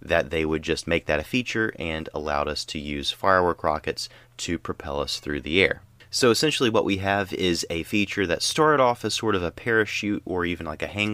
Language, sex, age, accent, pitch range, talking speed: English, male, 30-49, American, 80-110 Hz, 225 wpm